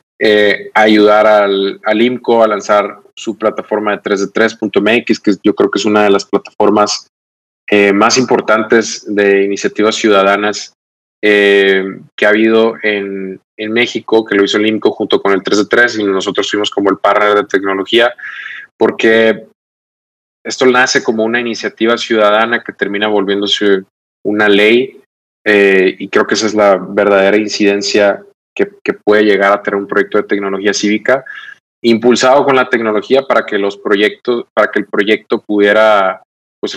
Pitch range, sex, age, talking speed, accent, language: 100-115 Hz, male, 20-39, 155 wpm, Mexican, Spanish